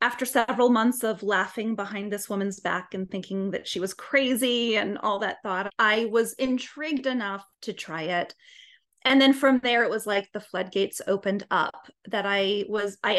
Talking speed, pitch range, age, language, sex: 185 wpm, 200-270 Hz, 20-39, English, female